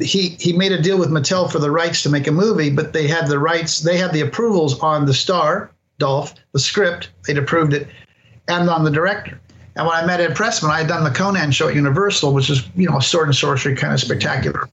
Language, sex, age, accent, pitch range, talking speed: English, male, 50-69, American, 140-165 Hz, 250 wpm